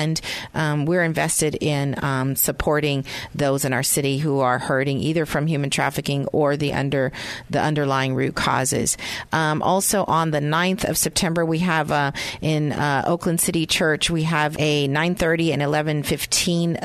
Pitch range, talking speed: 145-165 Hz, 165 wpm